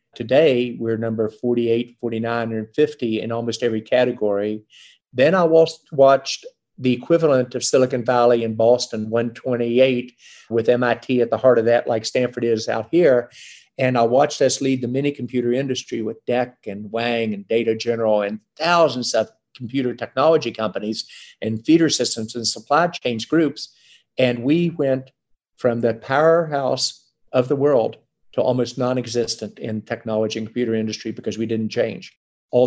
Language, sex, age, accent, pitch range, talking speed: English, male, 50-69, American, 115-135 Hz, 155 wpm